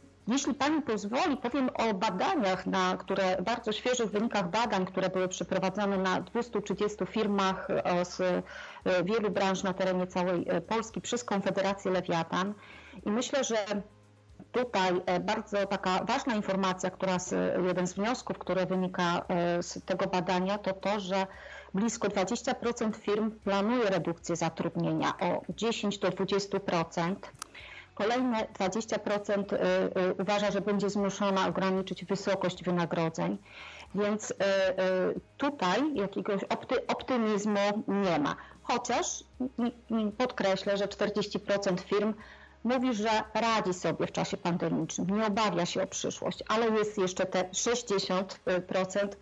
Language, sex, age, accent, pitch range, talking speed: Polish, female, 40-59, native, 185-215 Hz, 115 wpm